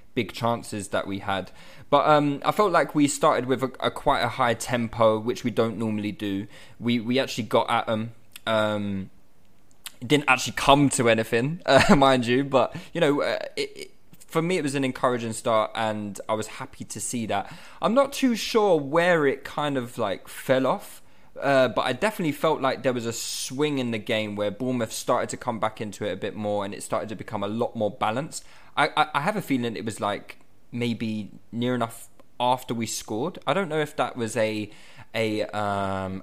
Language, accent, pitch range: English, British, 105-130 Hz